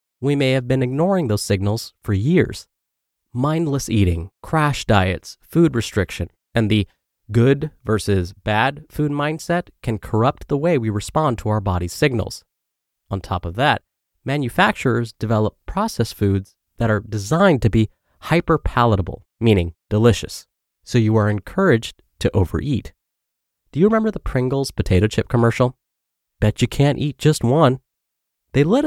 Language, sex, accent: English, male, American